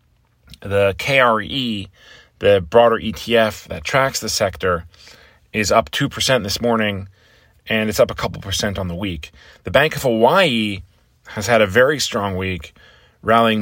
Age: 30-49